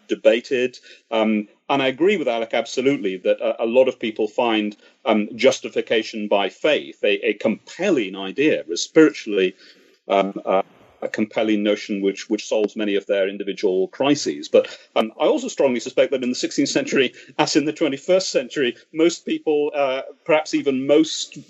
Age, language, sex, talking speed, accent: 40-59, English, male, 165 wpm, British